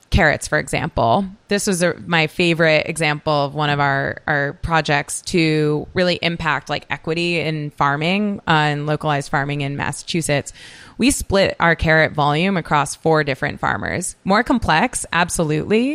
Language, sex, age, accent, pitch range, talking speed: English, female, 20-39, American, 145-180 Hz, 145 wpm